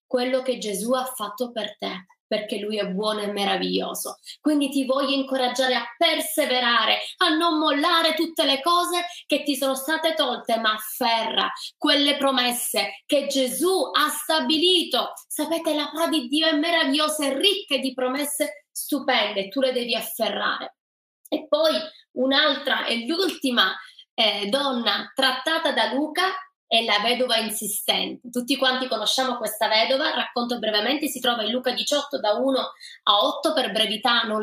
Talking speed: 150 wpm